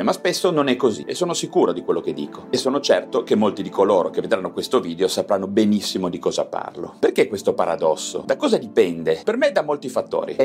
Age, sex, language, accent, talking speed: 30-49, male, Italian, native, 225 wpm